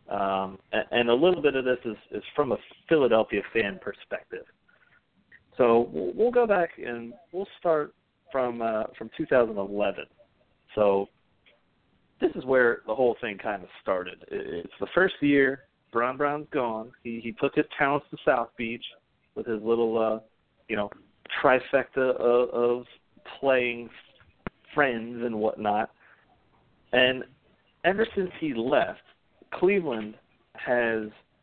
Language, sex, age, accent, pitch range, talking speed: English, male, 40-59, American, 110-150 Hz, 135 wpm